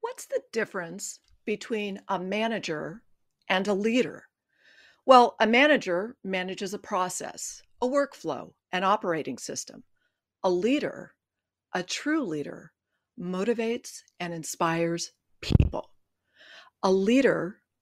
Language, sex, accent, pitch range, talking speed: English, female, American, 175-235 Hz, 105 wpm